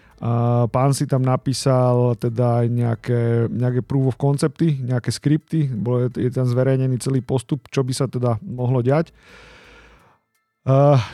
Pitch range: 120-135 Hz